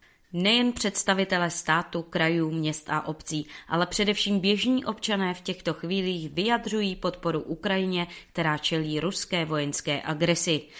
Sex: female